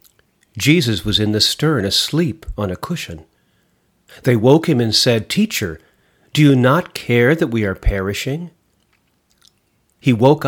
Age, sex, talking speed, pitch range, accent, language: 40-59, male, 145 wpm, 100-145 Hz, American, English